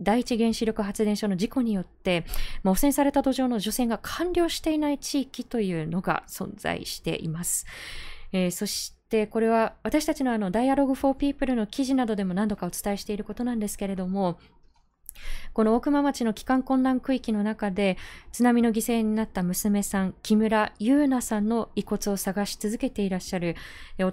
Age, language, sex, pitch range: 20-39, Japanese, female, 190-245 Hz